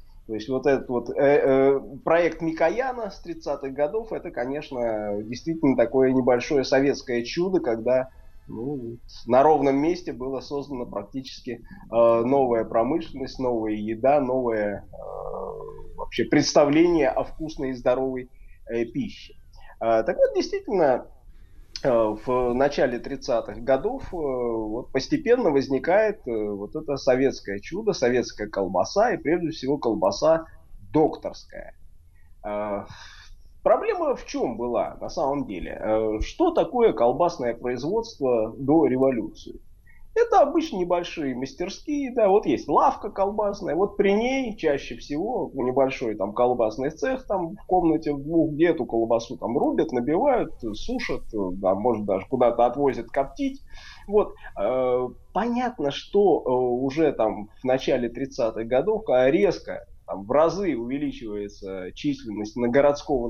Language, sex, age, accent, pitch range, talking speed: Russian, male, 20-39, native, 115-170 Hz, 125 wpm